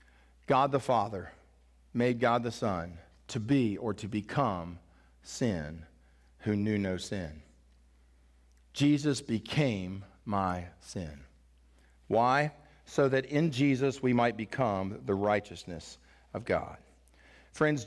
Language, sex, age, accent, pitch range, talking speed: English, male, 50-69, American, 85-140 Hz, 115 wpm